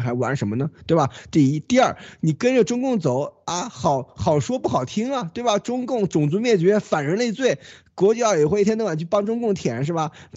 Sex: male